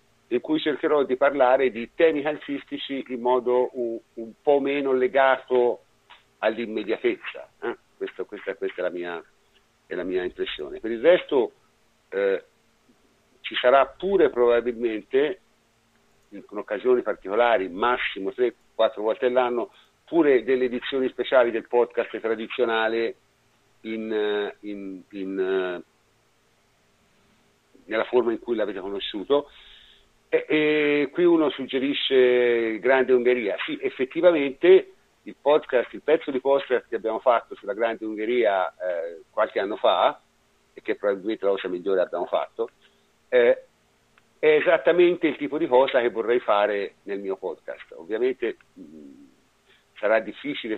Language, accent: Italian, native